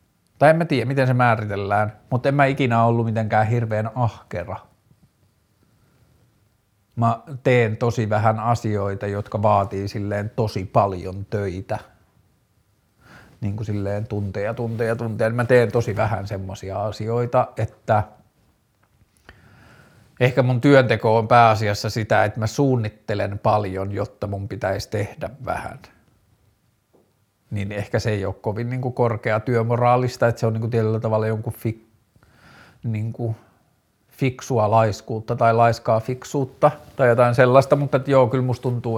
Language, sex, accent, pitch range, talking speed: Finnish, male, native, 105-125 Hz, 130 wpm